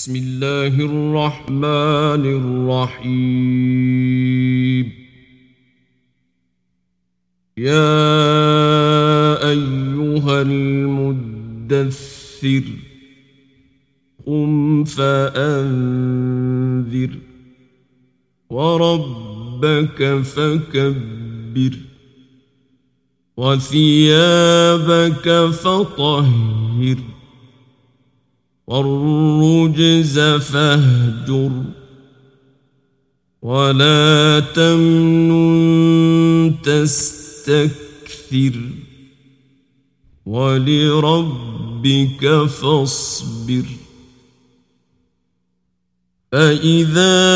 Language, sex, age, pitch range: Persian, male, 50-69, 130-150 Hz